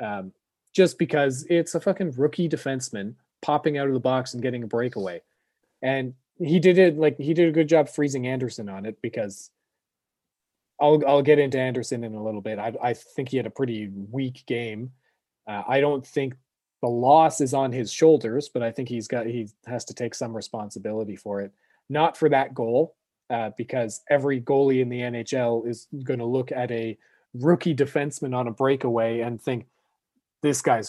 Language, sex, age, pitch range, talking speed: English, male, 30-49, 120-150 Hz, 190 wpm